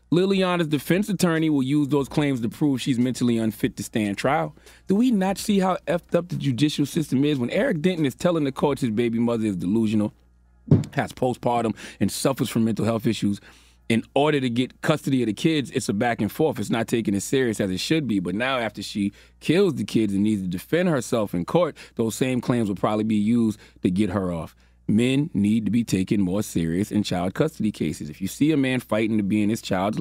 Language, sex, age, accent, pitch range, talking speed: English, male, 30-49, American, 110-180 Hz, 230 wpm